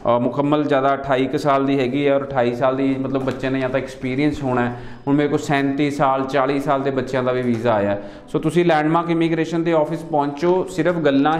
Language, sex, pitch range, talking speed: Punjabi, male, 135-150 Hz, 220 wpm